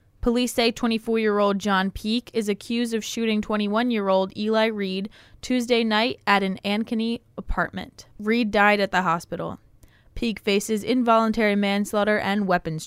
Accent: American